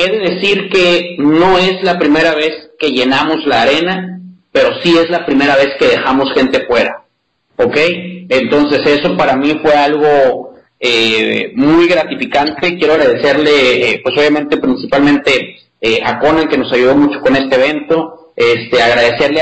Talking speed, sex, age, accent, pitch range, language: 160 wpm, male, 40-59, Mexican, 140-170 Hz, English